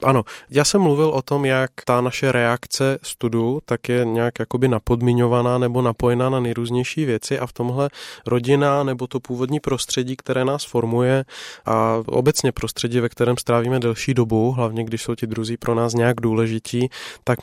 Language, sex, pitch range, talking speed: Czech, male, 115-130 Hz, 170 wpm